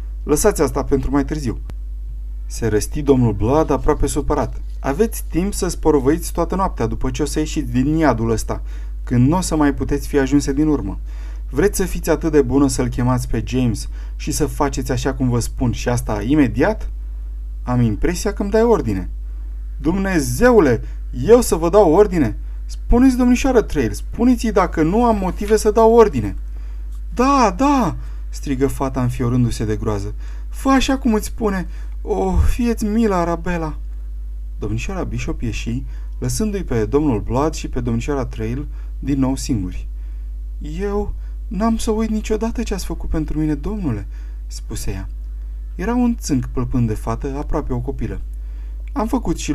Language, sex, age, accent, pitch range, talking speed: Romanian, male, 30-49, native, 100-160 Hz, 160 wpm